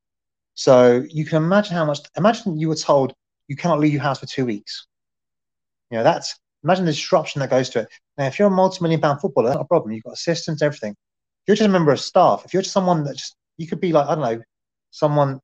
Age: 30-49